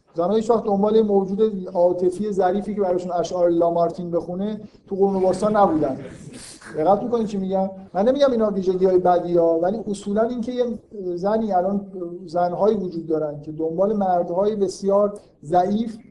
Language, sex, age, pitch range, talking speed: Persian, male, 50-69, 165-200 Hz, 160 wpm